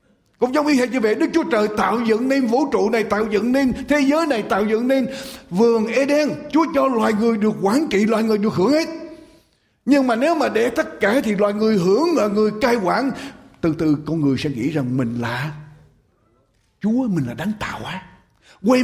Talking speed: 215 wpm